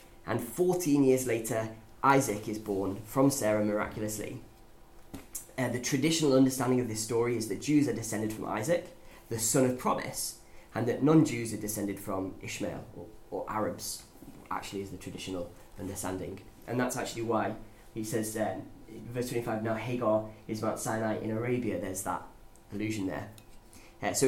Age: 20-39